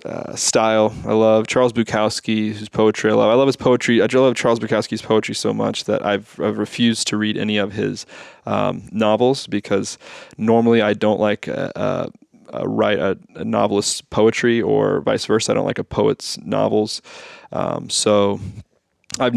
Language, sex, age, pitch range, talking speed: English, male, 20-39, 105-120 Hz, 175 wpm